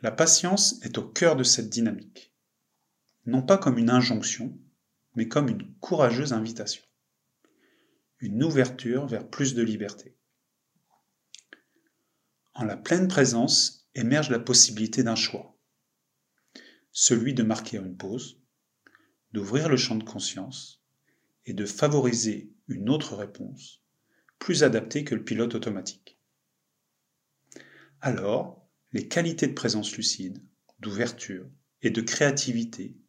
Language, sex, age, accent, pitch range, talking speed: French, male, 30-49, French, 110-140 Hz, 120 wpm